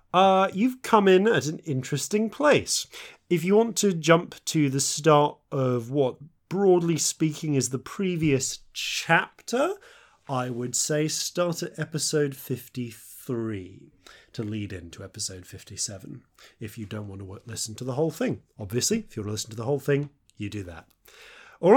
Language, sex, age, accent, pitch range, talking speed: English, male, 30-49, British, 120-180 Hz, 165 wpm